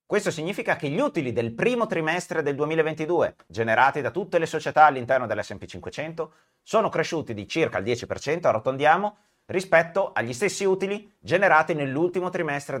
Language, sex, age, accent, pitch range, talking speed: Italian, male, 30-49, native, 135-180 Hz, 150 wpm